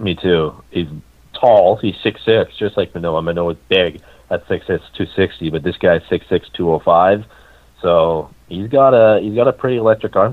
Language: English